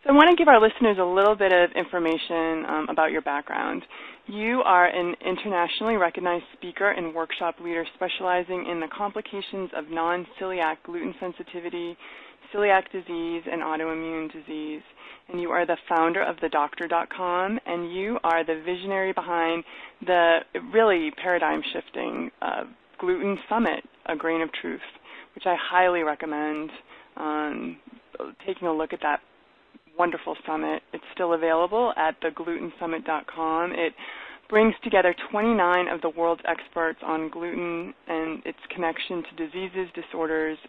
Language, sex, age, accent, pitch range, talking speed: English, female, 20-39, American, 160-190 Hz, 135 wpm